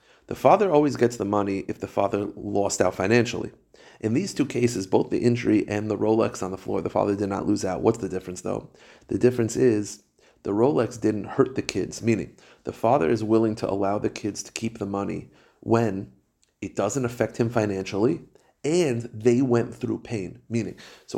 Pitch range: 100-120 Hz